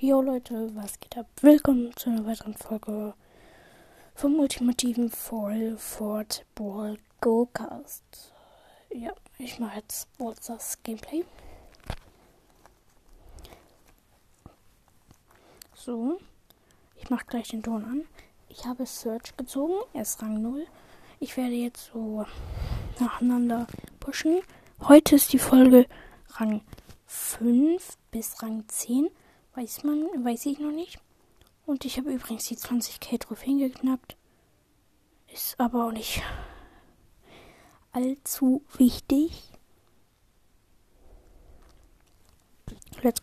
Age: 20-39